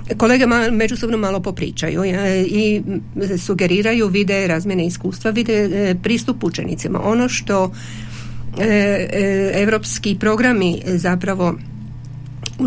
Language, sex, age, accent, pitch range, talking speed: Croatian, female, 50-69, native, 175-210 Hz, 90 wpm